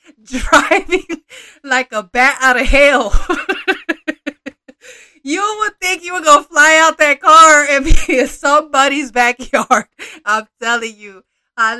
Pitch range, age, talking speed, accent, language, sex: 240-305 Hz, 20-39, 130 wpm, American, Spanish, female